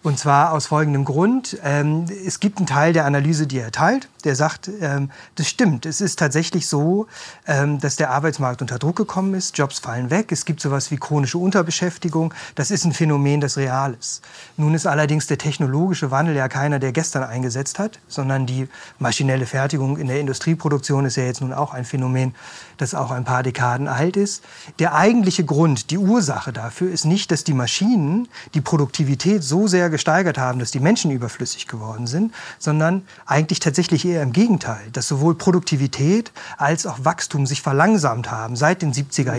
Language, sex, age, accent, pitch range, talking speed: German, male, 40-59, German, 135-170 Hz, 180 wpm